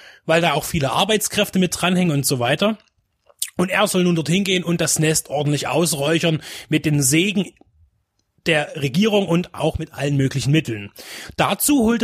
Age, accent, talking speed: 30-49, German, 170 wpm